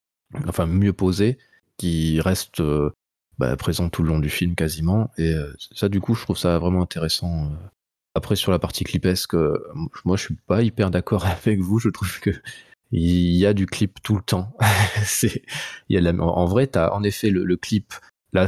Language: French